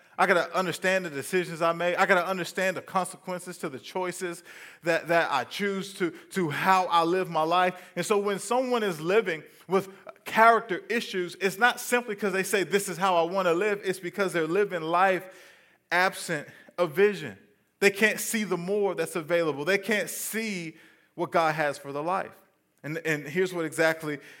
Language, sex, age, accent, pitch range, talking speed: English, male, 20-39, American, 145-195 Hz, 195 wpm